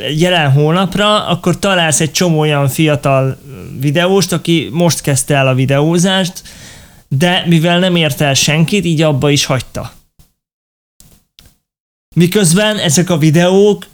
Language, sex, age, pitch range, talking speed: Hungarian, male, 20-39, 145-185 Hz, 120 wpm